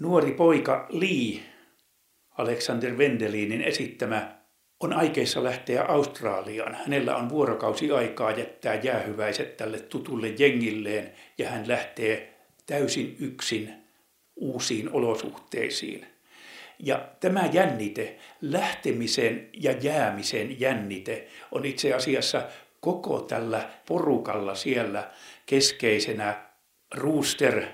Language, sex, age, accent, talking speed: Finnish, male, 60-79, native, 90 wpm